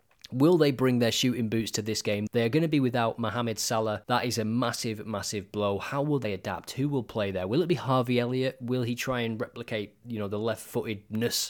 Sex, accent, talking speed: male, British, 235 wpm